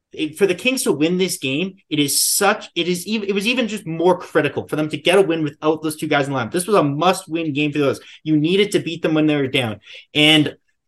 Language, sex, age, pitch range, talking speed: English, male, 20-39, 135-170 Hz, 270 wpm